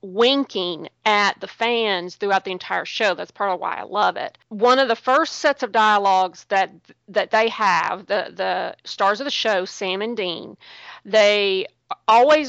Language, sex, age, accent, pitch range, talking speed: English, female, 40-59, American, 195-230 Hz, 180 wpm